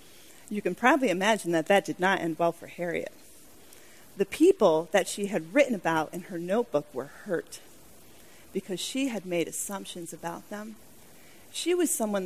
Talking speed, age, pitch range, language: 165 wpm, 40-59, 190-275 Hz, English